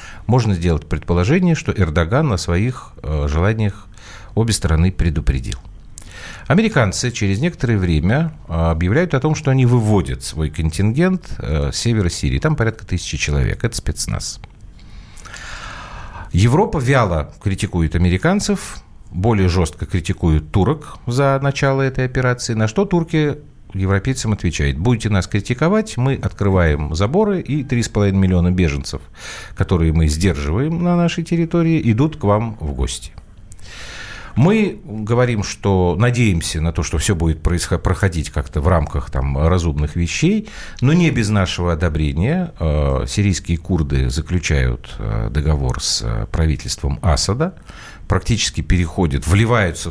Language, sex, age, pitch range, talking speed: Russian, male, 50-69, 80-120 Hz, 125 wpm